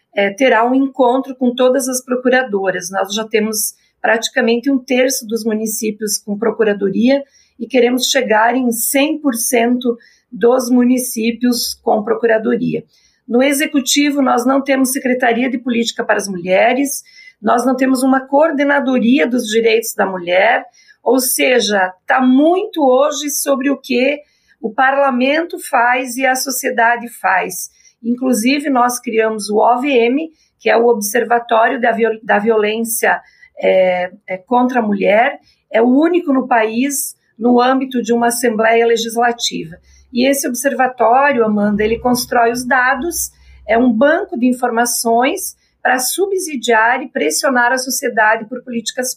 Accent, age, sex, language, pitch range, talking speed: Brazilian, 40-59, female, Portuguese, 230-265 Hz, 130 wpm